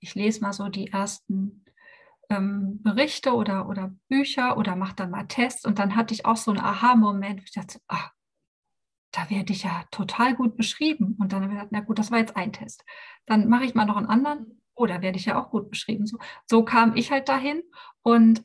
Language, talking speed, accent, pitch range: German, 220 wpm, German, 205-230 Hz